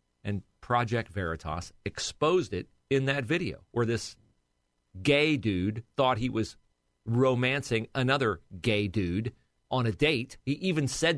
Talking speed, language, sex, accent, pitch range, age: 135 wpm, English, male, American, 95-145 Hz, 40-59